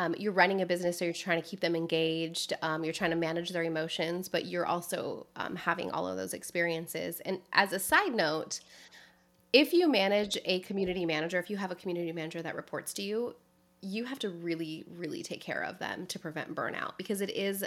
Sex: female